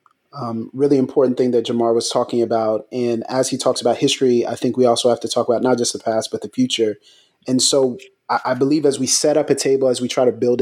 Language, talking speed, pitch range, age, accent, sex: English, 260 wpm, 120-135 Hz, 30-49, American, male